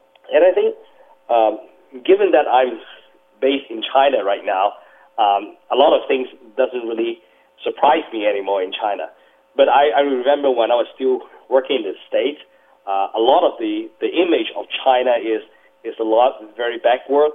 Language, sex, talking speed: English, male, 175 wpm